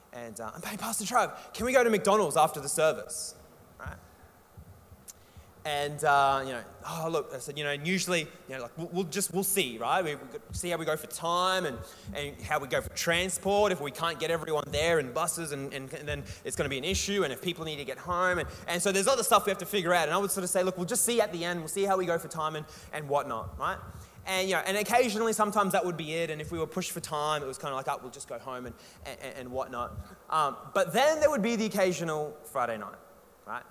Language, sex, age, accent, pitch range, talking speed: English, male, 20-39, Australian, 145-200 Hz, 270 wpm